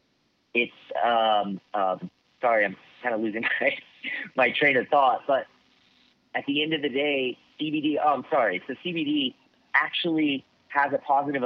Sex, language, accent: male, English, American